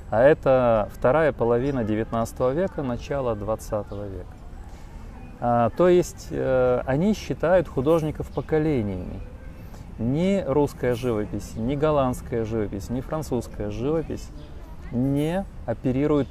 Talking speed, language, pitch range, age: 100 wpm, Russian, 100-135 Hz, 30-49